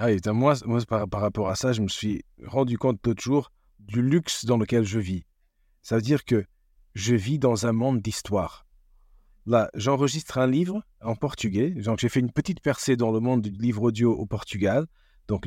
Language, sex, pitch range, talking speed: French, male, 110-135 Hz, 200 wpm